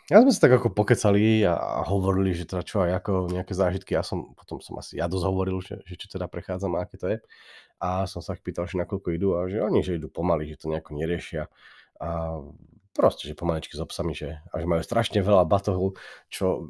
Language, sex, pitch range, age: Slovak, male, 80-95 Hz, 30-49